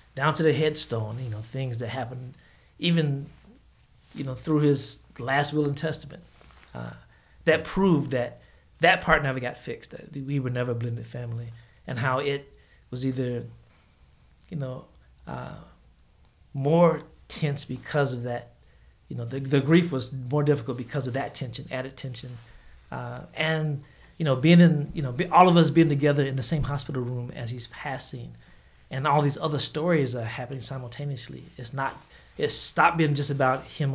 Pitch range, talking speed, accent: 120-150 Hz, 175 wpm, American